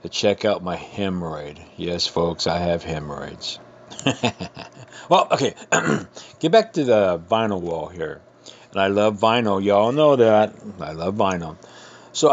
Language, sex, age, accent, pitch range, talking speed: English, male, 50-69, American, 100-120 Hz, 145 wpm